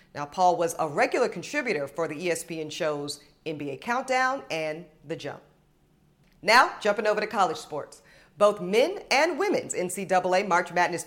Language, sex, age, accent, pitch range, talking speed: English, female, 40-59, American, 170-255 Hz, 150 wpm